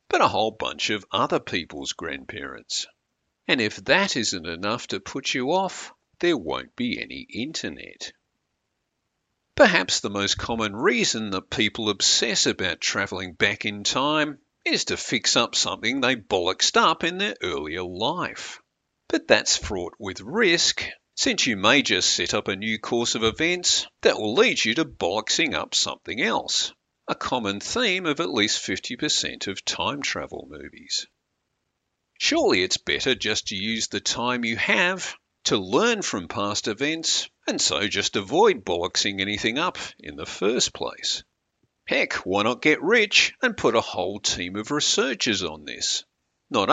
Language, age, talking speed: English, 50-69, 160 wpm